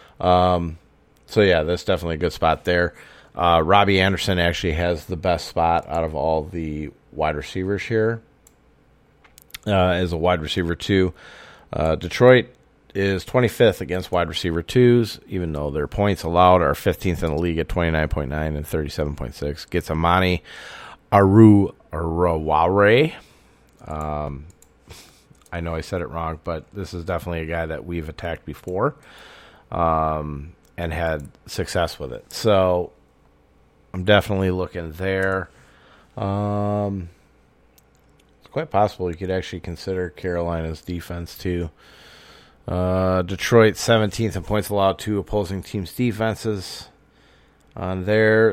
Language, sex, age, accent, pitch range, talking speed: English, male, 40-59, American, 80-100 Hz, 130 wpm